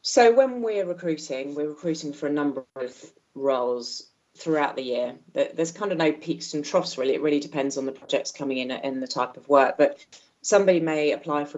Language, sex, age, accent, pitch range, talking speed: English, female, 30-49, British, 135-155 Hz, 205 wpm